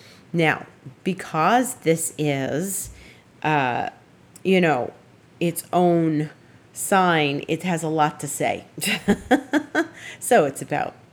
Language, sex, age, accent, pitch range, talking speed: English, female, 40-59, American, 145-180 Hz, 100 wpm